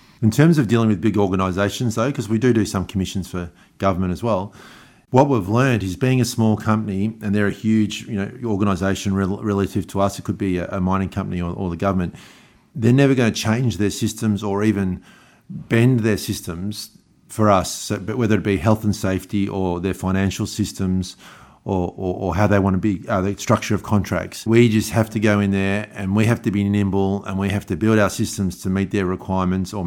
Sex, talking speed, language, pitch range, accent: male, 215 wpm, English, 95-110 Hz, Australian